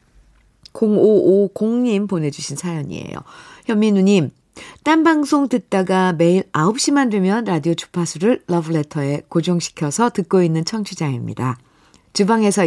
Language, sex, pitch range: Korean, female, 150-195 Hz